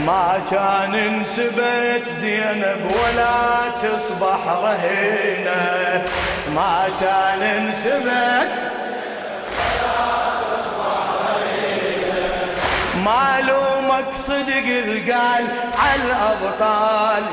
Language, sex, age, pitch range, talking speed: Arabic, male, 30-49, 195-240 Hz, 60 wpm